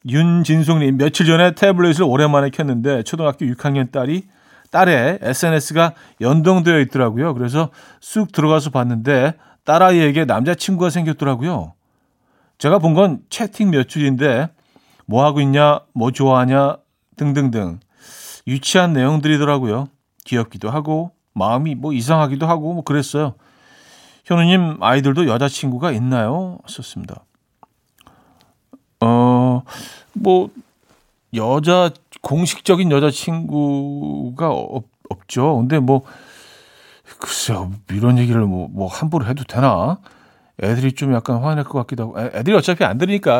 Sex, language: male, Korean